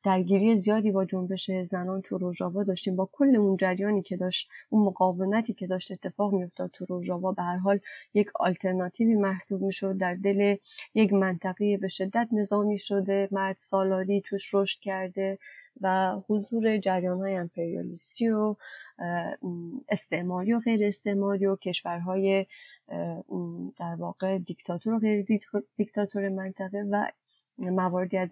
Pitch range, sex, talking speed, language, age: 185-210 Hz, female, 135 wpm, Persian, 20-39